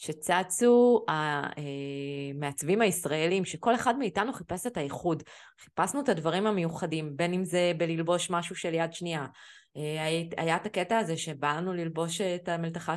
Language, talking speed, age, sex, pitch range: Hebrew, 140 wpm, 20-39, female, 150-205 Hz